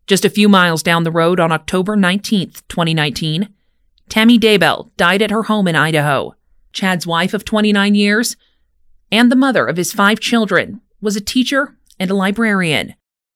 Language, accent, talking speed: English, American, 165 wpm